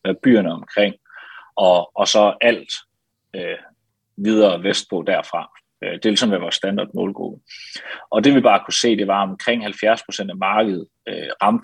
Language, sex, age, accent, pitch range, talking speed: Danish, male, 30-49, native, 100-120 Hz, 160 wpm